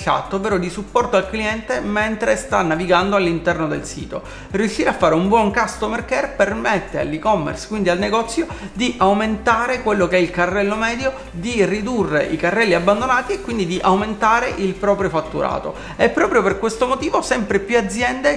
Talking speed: 165 wpm